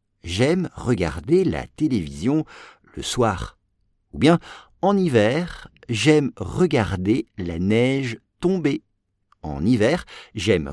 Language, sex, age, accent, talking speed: English, male, 50-69, French, 100 wpm